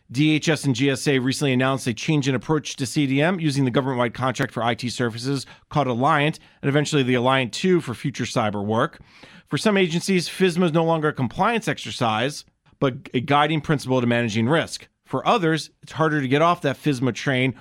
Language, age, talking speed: English, 40-59, 190 wpm